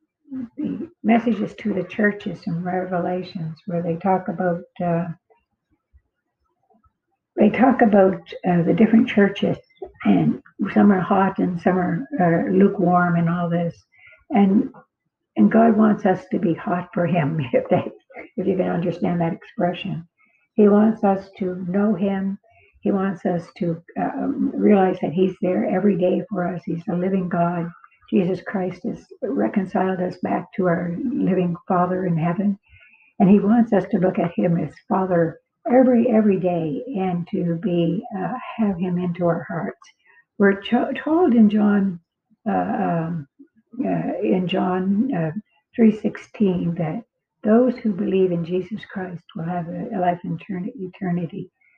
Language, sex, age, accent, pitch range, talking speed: English, female, 60-79, American, 175-220 Hz, 155 wpm